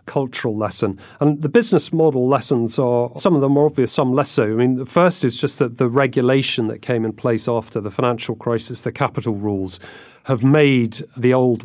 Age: 40-59